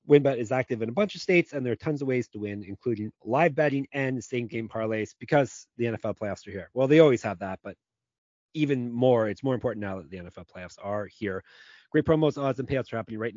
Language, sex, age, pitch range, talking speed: English, male, 30-49, 105-140 Hz, 245 wpm